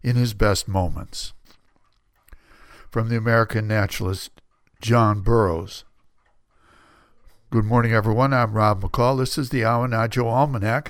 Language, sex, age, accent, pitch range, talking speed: English, male, 60-79, American, 105-130 Hz, 115 wpm